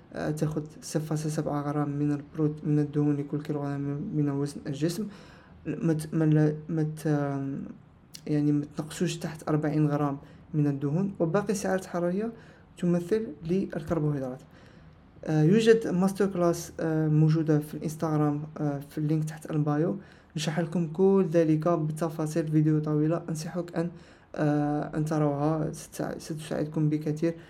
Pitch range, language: 150-170 Hz, Arabic